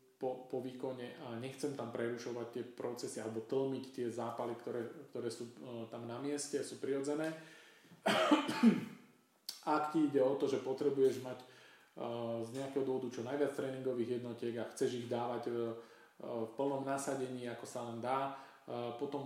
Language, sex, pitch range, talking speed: Slovak, male, 115-135 Hz, 170 wpm